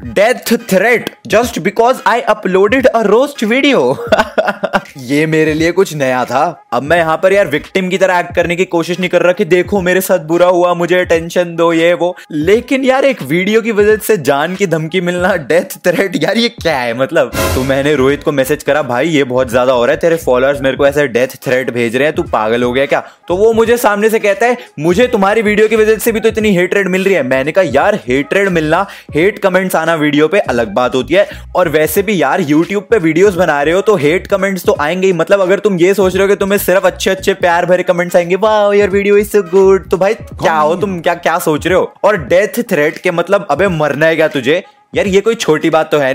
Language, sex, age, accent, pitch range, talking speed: Hindi, male, 20-39, native, 155-210 Hz, 185 wpm